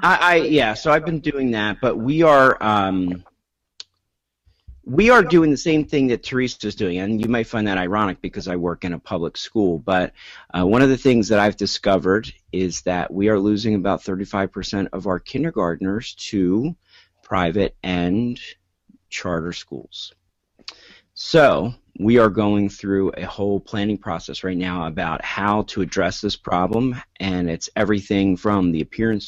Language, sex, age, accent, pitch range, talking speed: English, male, 40-59, American, 90-105 Hz, 170 wpm